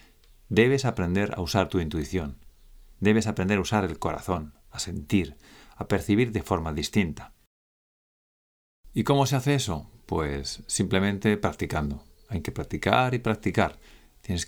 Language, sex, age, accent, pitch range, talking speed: Spanish, male, 50-69, Spanish, 80-110 Hz, 135 wpm